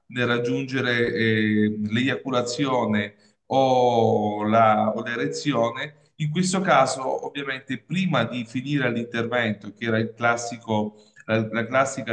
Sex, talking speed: male, 115 wpm